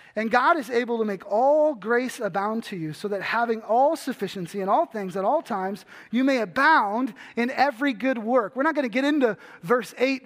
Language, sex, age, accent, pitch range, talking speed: English, male, 30-49, American, 185-255 Hz, 210 wpm